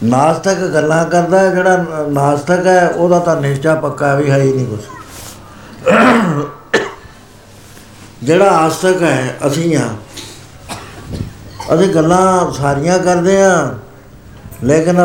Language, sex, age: Punjabi, male, 60-79